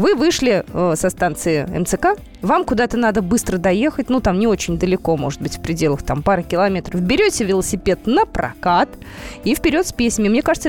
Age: 20-39